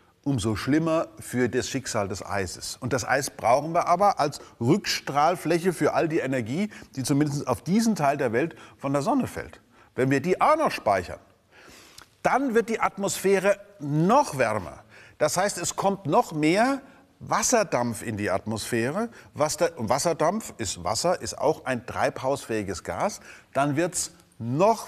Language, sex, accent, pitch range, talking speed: German, male, German, 125-190 Hz, 155 wpm